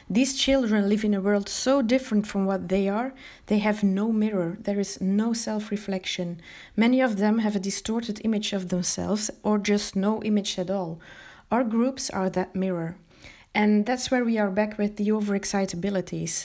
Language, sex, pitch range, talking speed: English, female, 190-225 Hz, 180 wpm